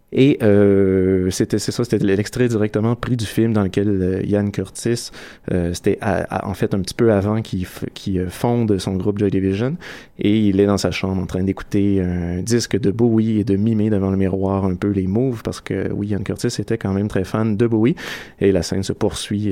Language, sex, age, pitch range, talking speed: French, male, 30-49, 95-110 Hz, 230 wpm